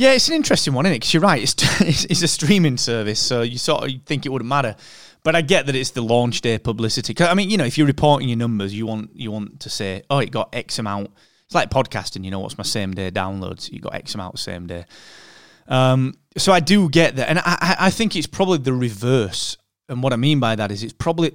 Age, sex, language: 20-39, male, English